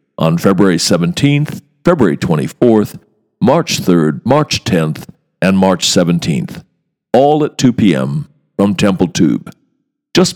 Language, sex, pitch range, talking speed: English, male, 90-145 Hz, 115 wpm